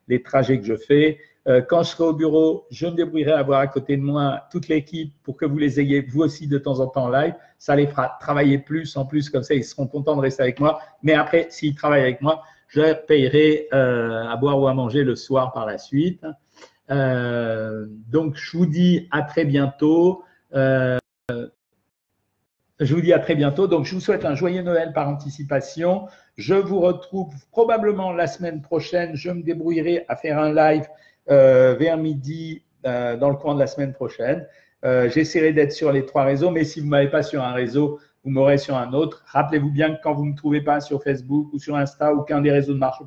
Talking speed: 215 wpm